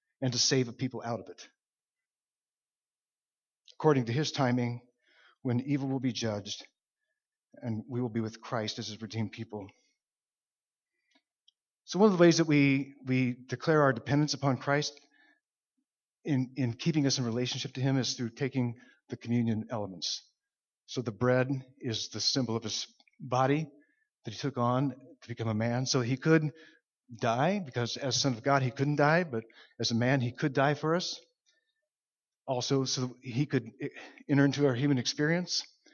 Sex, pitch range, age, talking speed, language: male, 120-150 Hz, 50-69, 170 wpm, English